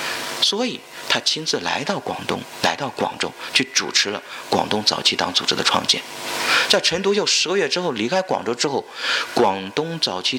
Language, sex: Chinese, male